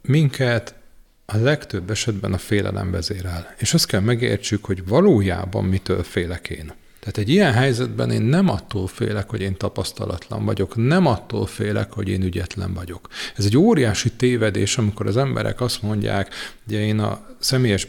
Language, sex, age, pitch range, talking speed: Hungarian, male, 40-59, 100-125 Hz, 160 wpm